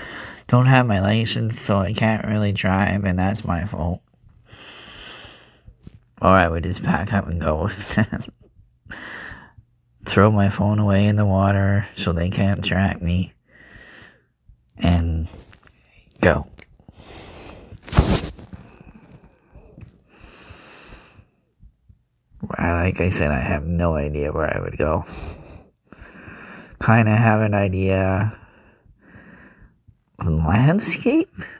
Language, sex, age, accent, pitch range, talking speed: English, male, 30-49, American, 85-110 Hz, 105 wpm